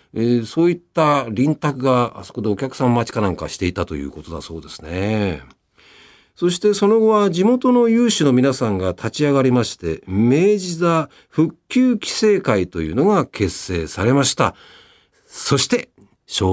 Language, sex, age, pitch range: Japanese, male, 50-69, 95-150 Hz